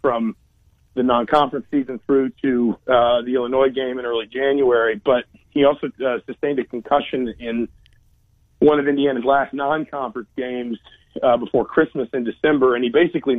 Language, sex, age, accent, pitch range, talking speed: English, male, 40-59, American, 120-140 Hz, 155 wpm